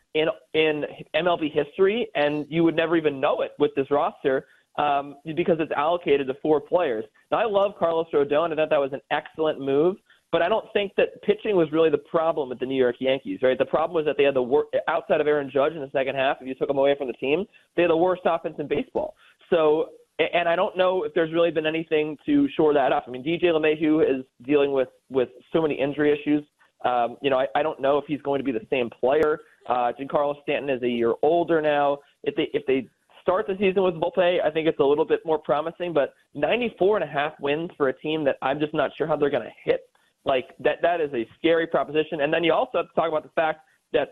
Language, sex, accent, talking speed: English, male, American, 255 wpm